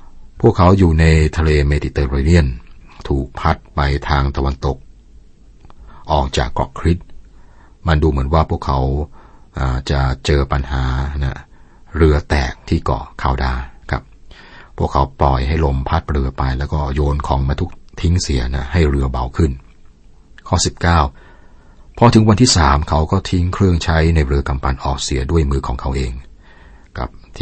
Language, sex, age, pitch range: Thai, male, 60-79, 65-85 Hz